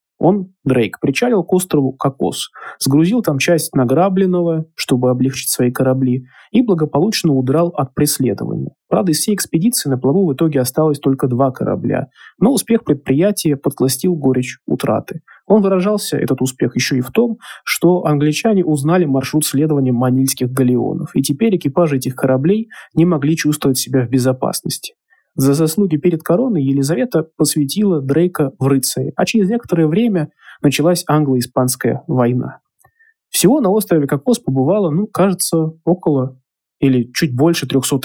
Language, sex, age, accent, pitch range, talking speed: Russian, male, 20-39, native, 130-170 Hz, 145 wpm